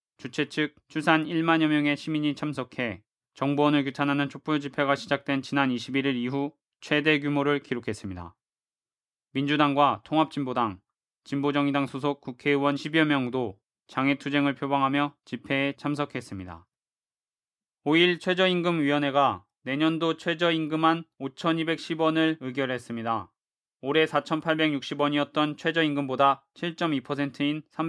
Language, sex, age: Korean, male, 20-39